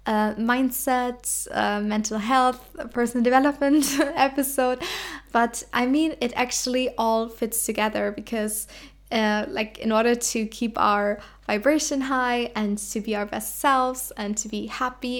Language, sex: English, female